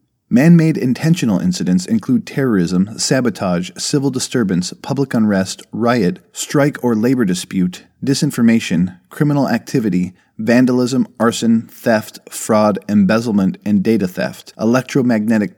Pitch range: 105-140 Hz